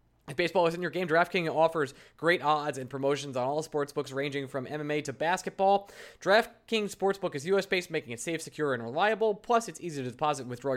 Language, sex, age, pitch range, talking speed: English, male, 20-39, 145-210 Hz, 200 wpm